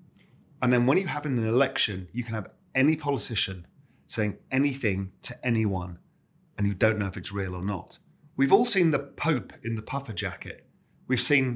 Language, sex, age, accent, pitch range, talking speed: English, male, 40-59, British, 110-145 Hz, 185 wpm